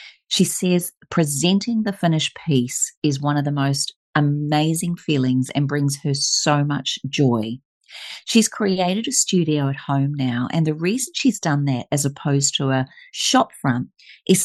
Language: English